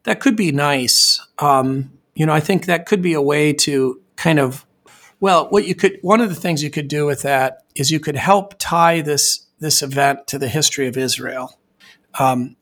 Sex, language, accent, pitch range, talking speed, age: male, English, American, 130-155 Hz, 210 wpm, 40-59